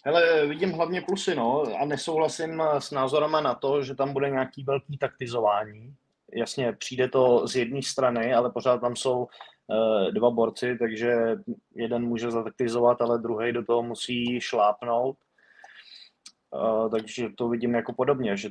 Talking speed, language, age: 150 wpm, Czech, 20-39